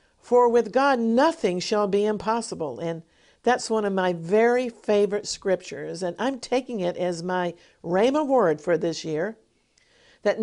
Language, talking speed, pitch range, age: English, 155 wpm, 175-240 Hz, 50-69